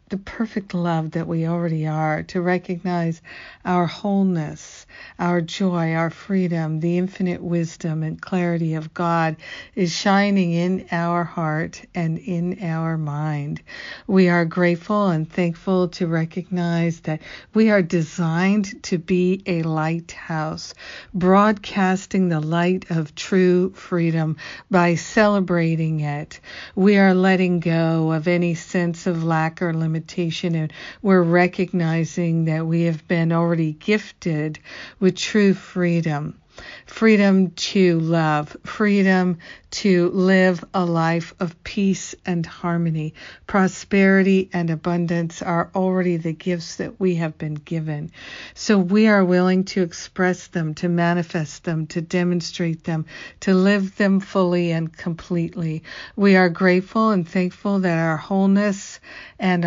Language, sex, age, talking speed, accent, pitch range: English, female, 60-79, 130 wpm, American, 165-190 Hz